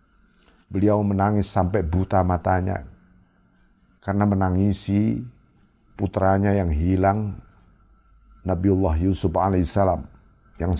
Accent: native